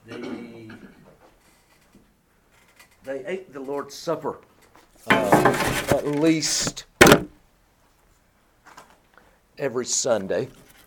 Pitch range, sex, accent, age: 100-150 Hz, male, American, 60-79